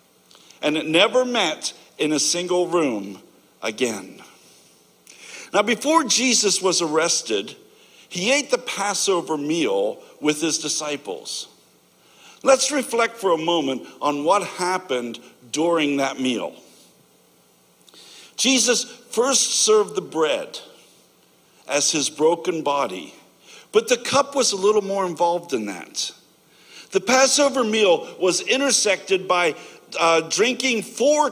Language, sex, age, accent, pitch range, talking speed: English, male, 60-79, American, 165-270 Hz, 115 wpm